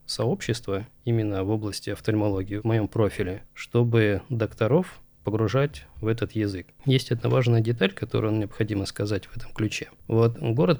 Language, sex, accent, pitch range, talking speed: Russian, male, native, 105-125 Hz, 145 wpm